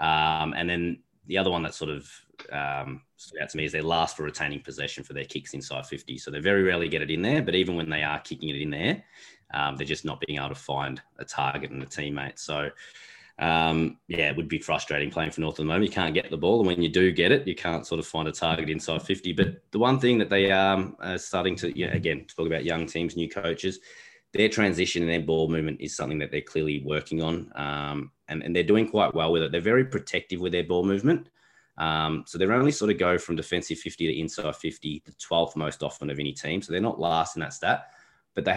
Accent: Australian